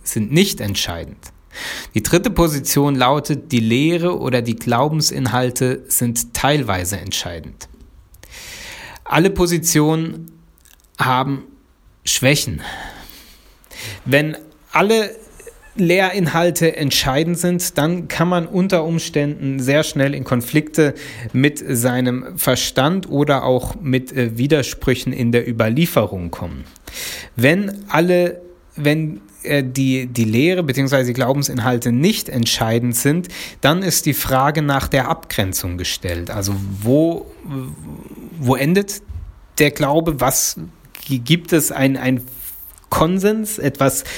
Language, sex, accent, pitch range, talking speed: German, male, German, 120-160 Hz, 105 wpm